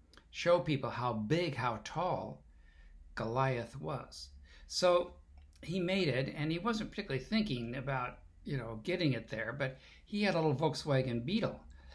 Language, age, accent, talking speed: English, 60-79, American, 150 wpm